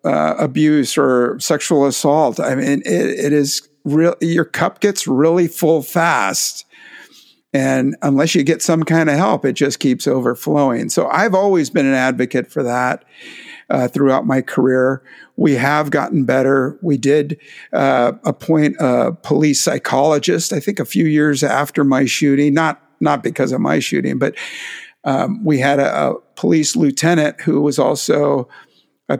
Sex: male